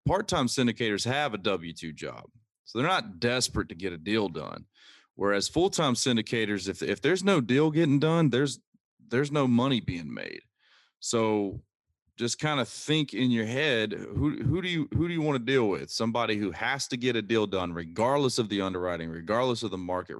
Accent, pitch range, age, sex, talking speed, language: American, 90-120 Hz, 30-49, male, 195 wpm, English